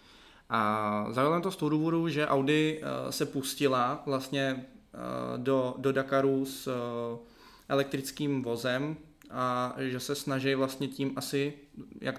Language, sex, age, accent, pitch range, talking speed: Czech, male, 20-39, native, 115-140 Hz, 125 wpm